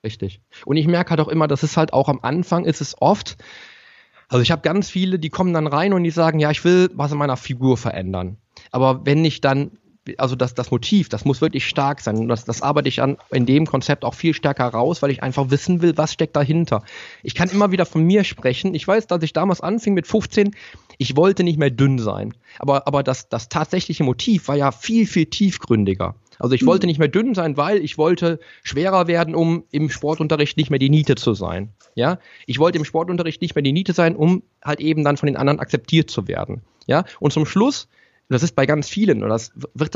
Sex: male